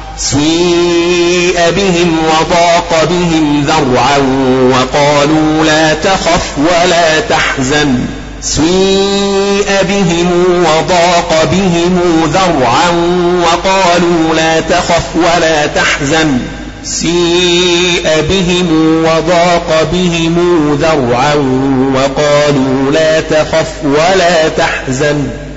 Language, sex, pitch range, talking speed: Arabic, male, 145-175 Hz, 70 wpm